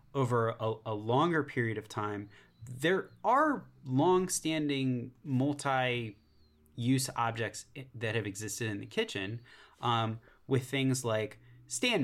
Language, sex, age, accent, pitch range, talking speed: English, male, 30-49, American, 110-130 Hz, 115 wpm